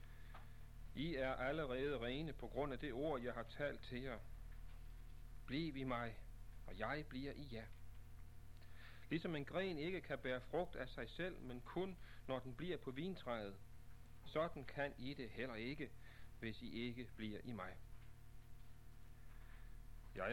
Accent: native